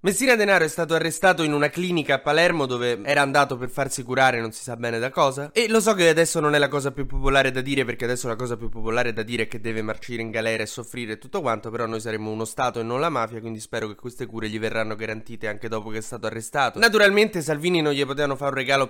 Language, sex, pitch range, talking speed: Italian, male, 115-150 Hz, 270 wpm